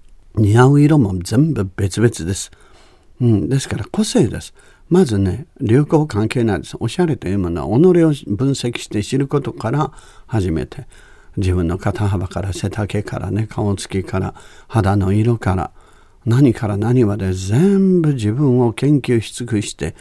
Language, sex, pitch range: Japanese, male, 100-150 Hz